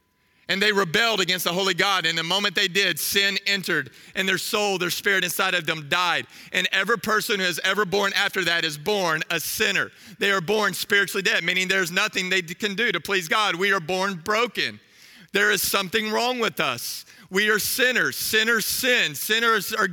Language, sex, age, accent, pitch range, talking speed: English, male, 40-59, American, 195-250 Hz, 200 wpm